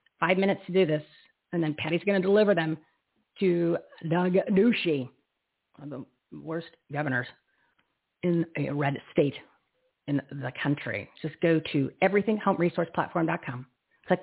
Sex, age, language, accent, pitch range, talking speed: female, 40-59, English, American, 135-170 Hz, 135 wpm